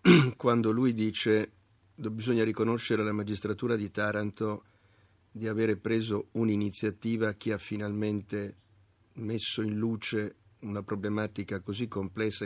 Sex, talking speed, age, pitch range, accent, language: male, 115 wpm, 50-69, 105-120 Hz, native, Italian